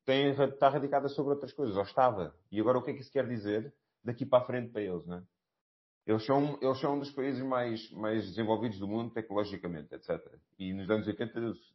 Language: Portuguese